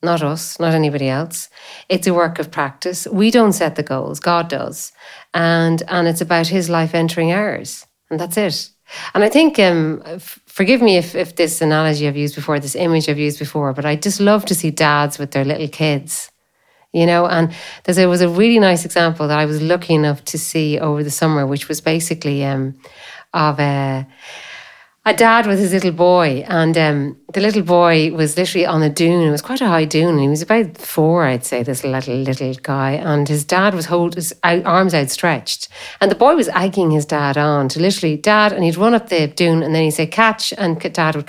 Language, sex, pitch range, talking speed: English, female, 150-180 Hz, 215 wpm